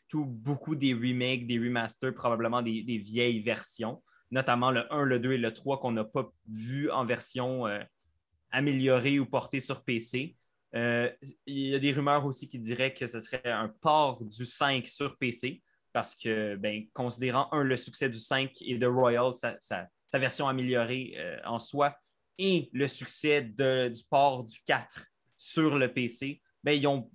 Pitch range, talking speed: 120-135 Hz, 185 wpm